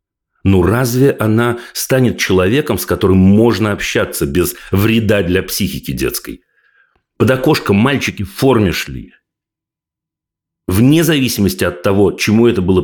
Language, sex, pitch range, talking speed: Russian, male, 95-125 Hz, 125 wpm